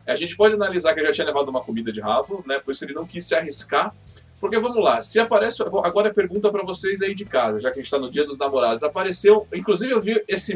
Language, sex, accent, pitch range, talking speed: Portuguese, male, Brazilian, 135-210 Hz, 275 wpm